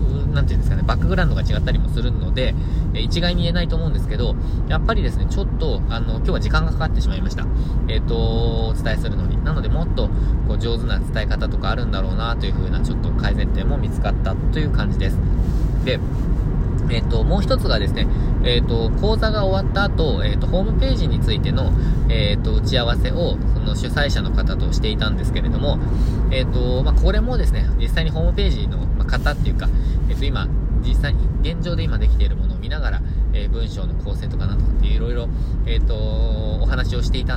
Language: Japanese